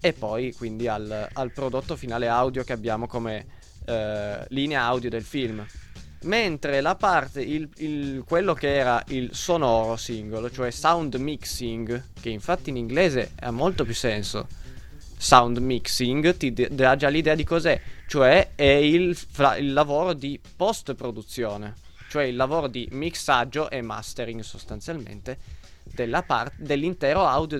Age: 20-39